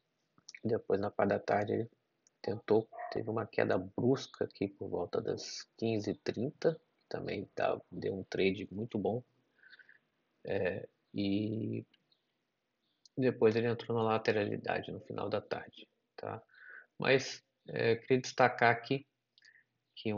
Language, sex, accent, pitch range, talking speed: Portuguese, male, Brazilian, 105-120 Hz, 120 wpm